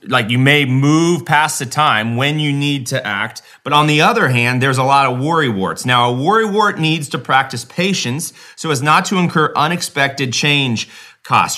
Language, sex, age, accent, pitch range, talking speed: English, male, 30-49, American, 130-170 Hz, 200 wpm